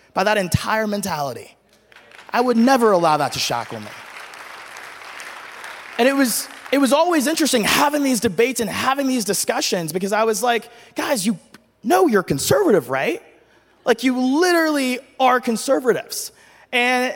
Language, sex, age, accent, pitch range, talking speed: English, male, 20-39, American, 170-235 Hz, 145 wpm